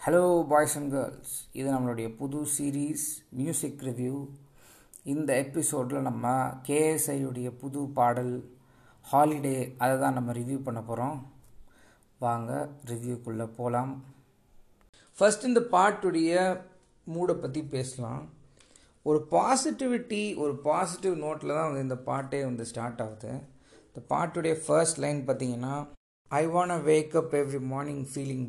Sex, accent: male, native